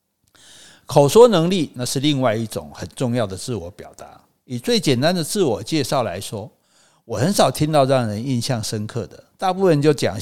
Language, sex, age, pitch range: Chinese, male, 50-69, 115-150 Hz